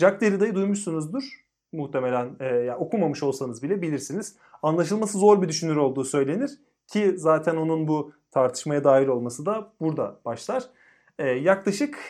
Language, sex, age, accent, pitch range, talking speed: Turkish, male, 30-49, native, 140-200 Hz, 140 wpm